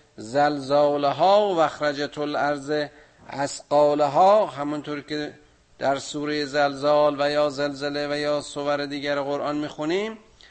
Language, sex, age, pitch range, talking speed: Persian, male, 50-69, 140-150 Hz, 120 wpm